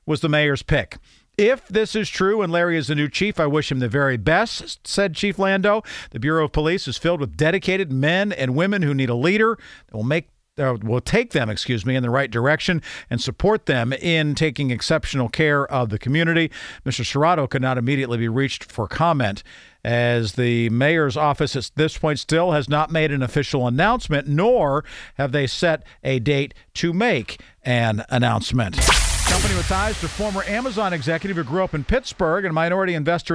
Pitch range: 135-175 Hz